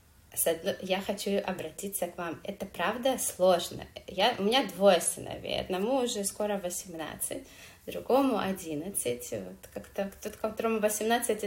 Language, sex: Russian, female